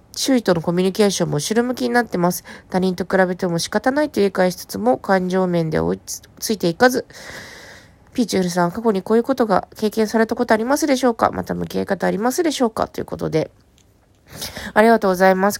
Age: 20-39